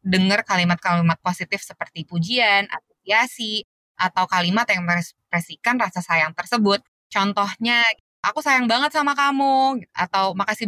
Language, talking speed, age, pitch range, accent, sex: Indonesian, 120 wpm, 20-39, 175-230 Hz, native, female